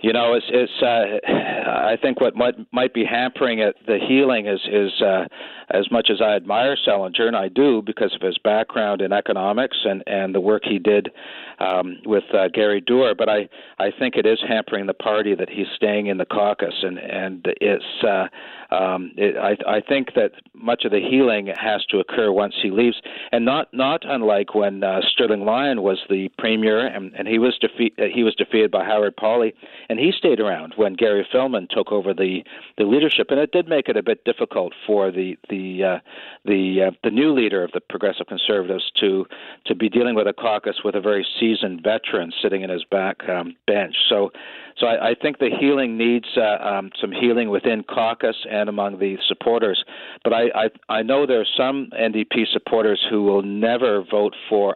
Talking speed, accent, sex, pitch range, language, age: 205 wpm, American, male, 95-115 Hz, English, 50-69